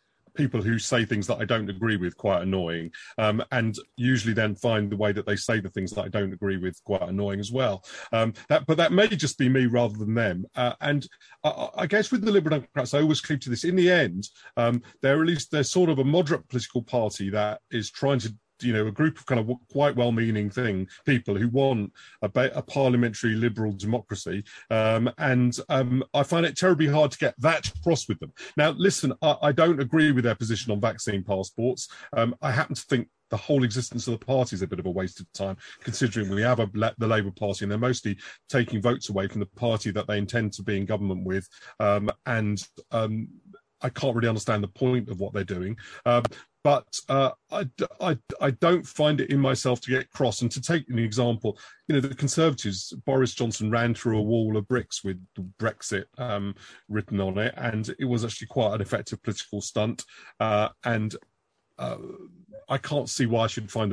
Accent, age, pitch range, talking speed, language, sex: British, 40-59, 105-135 Hz, 215 wpm, English, male